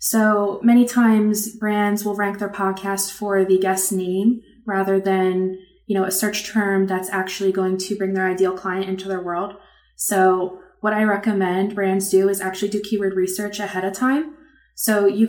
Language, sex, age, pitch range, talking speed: English, female, 20-39, 190-215 Hz, 180 wpm